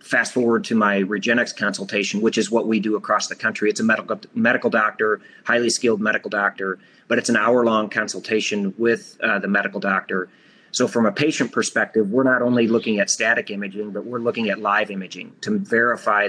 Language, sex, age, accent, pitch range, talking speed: English, male, 30-49, American, 105-120 Hz, 200 wpm